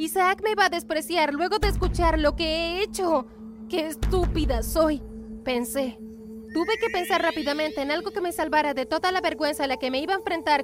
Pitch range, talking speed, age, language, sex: 260-340 Hz, 205 wpm, 20-39, Spanish, female